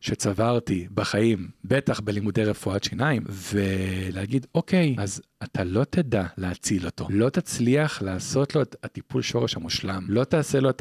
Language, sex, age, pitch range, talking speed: Hebrew, male, 40-59, 105-135 Hz, 145 wpm